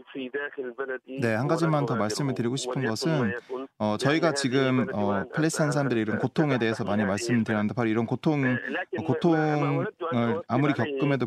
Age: 20-39